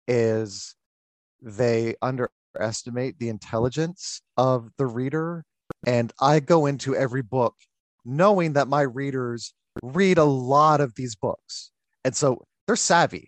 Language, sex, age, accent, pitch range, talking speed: English, male, 30-49, American, 120-170 Hz, 125 wpm